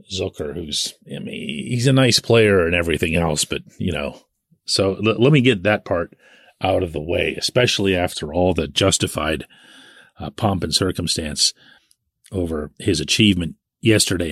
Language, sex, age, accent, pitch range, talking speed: English, male, 40-59, American, 90-125 Hz, 160 wpm